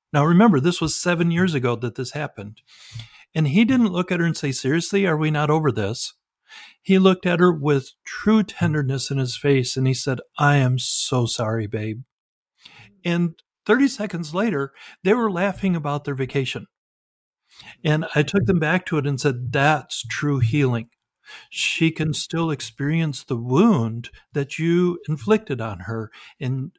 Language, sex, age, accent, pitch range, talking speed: English, male, 50-69, American, 130-175 Hz, 170 wpm